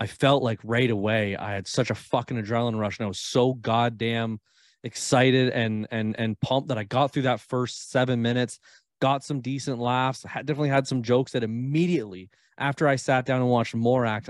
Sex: male